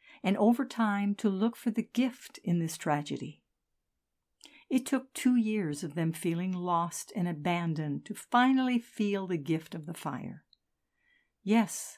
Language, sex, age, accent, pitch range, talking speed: English, female, 60-79, American, 170-225 Hz, 150 wpm